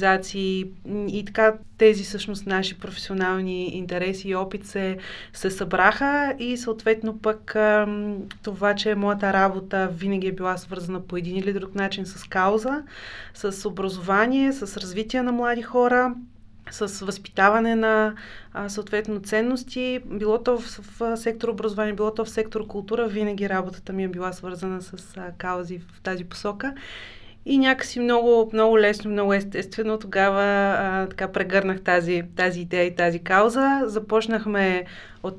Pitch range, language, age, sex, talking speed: 190-220 Hz, Bulgarian, 30-49, female, 140 wpm